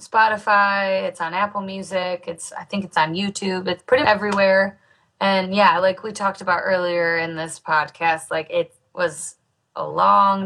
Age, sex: 20-39, female